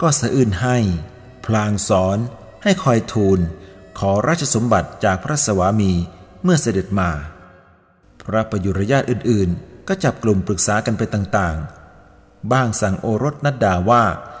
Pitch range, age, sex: 95-120 Hz, 30-49, male